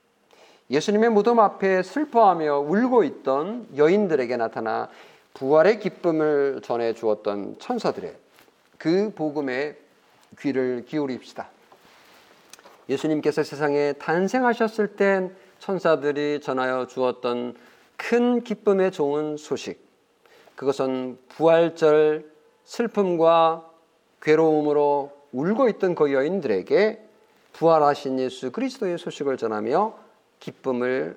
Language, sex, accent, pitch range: Korean, male, native, 130-195 Hz